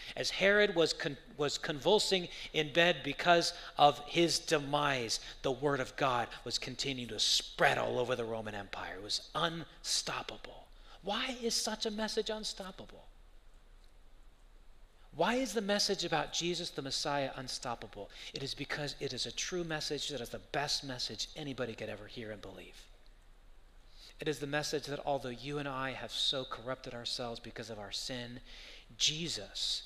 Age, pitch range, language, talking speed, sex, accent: 30-49, 130-190 Hz, English, 160 wpm, male, American